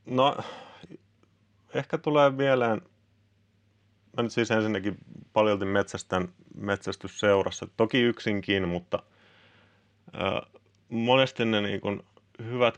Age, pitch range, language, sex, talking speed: 30-49, 95-110 Hz, Finnish, male, 80 wpm